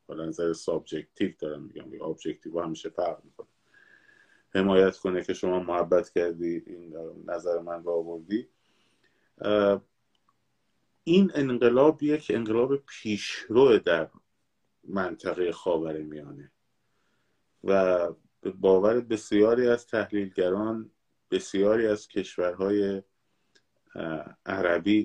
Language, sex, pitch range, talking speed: Persian, male, 85-125 Hz, 85 wpm